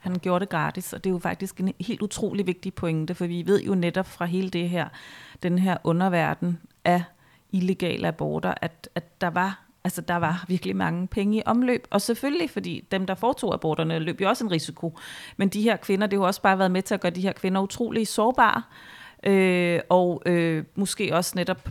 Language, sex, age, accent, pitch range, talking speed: Danish, female, 30-49, native, 180-225 Hz, 215 wpm